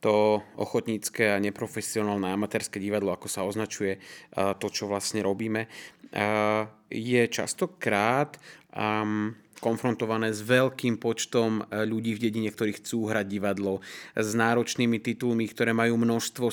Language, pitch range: Slovak, 105-135 Hz